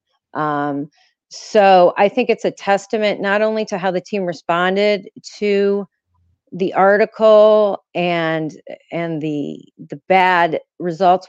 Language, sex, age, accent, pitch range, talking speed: English, female, 40-59, American, 165-205 Hz, 120 wpm